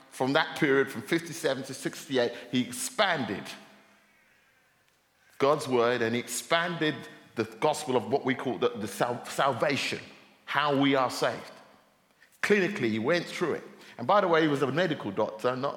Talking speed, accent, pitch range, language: 160 wpm, British, 125-185 Hz, English